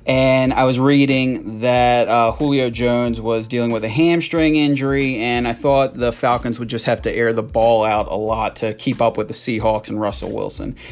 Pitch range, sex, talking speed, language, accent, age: 115-135 Hz, male, 210 wpm, English, American, 30-49